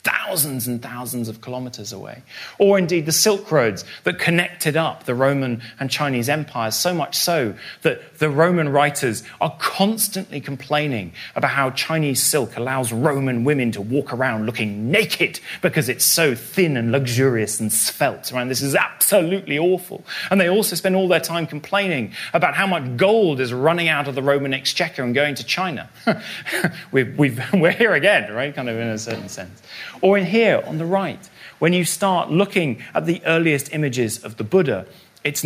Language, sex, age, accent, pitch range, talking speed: English, male, 30-49, British, 110-155 Hz, 175 wpm